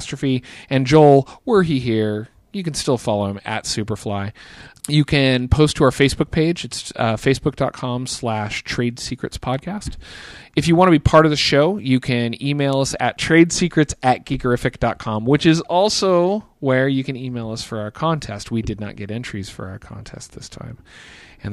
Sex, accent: male, American